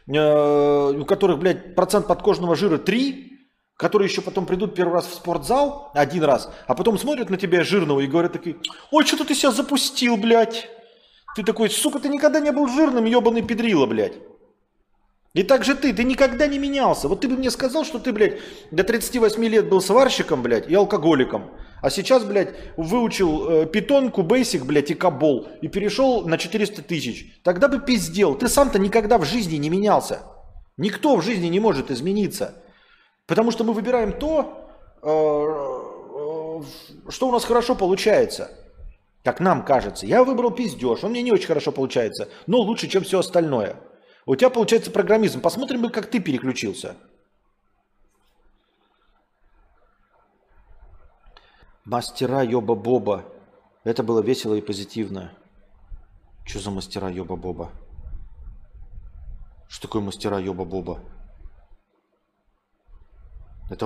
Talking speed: 140 wpm